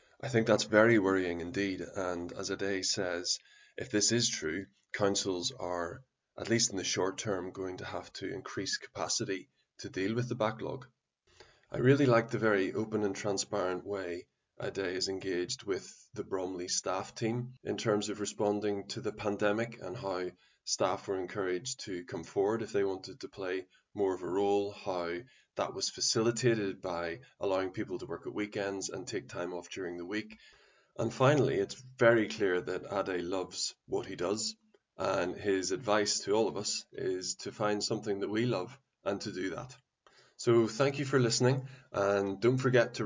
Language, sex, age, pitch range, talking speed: English, male, 20-39, 95-115 Hz, 185 wpm